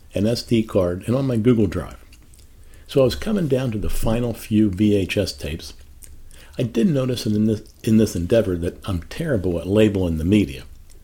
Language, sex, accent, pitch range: English, male, American, 75-115 Hz